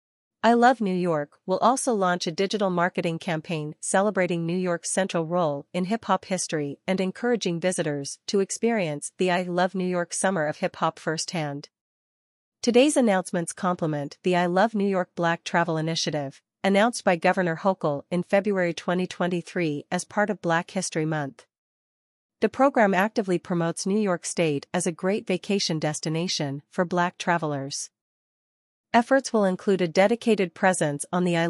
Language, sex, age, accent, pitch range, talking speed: English, female, 40-59, American, 165-195 Hz, 160 wpm